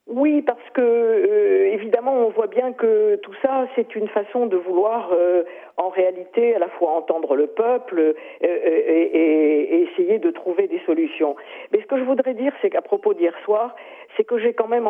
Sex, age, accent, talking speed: female, 50-69, French, 200 wpm